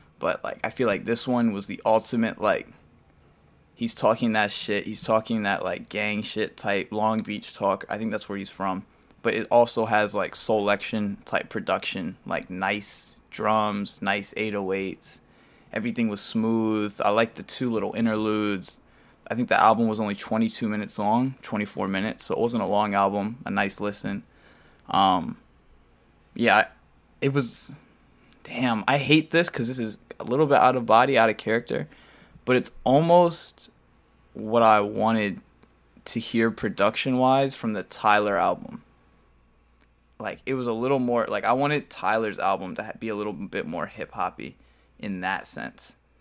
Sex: male